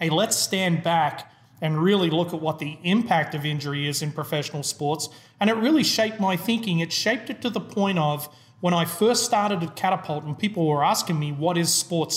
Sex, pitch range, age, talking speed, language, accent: male, 150-190 Hz, 30-49, 215 wpm, English, Australian